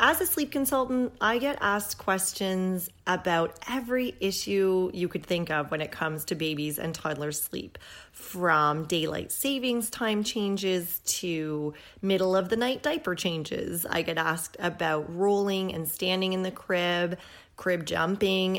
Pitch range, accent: 165-195 Hz, American